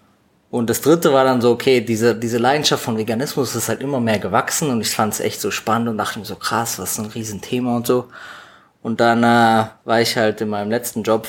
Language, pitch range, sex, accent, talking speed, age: German, 100-115 Hz, male, German, 240 wpm, 20-39